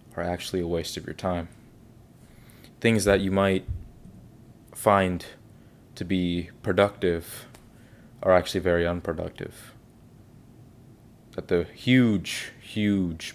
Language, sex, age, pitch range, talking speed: English, male, 20-39, 90-120 Hz, 105 wpm